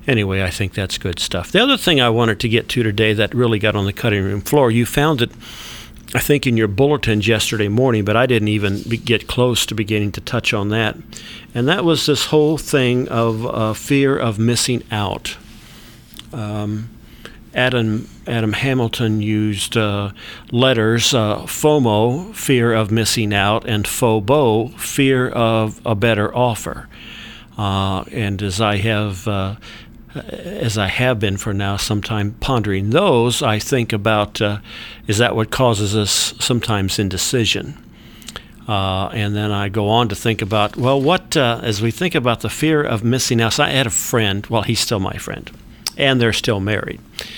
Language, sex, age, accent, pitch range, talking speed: English, male, 50-69, American, 105-125 Hz, 175 wpm